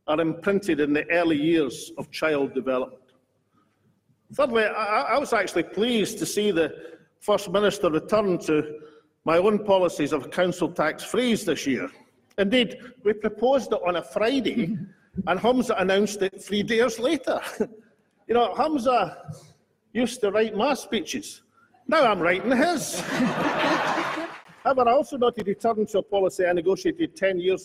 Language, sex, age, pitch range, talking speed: English, male, 50-69, 165-220 Hz, 150 wpm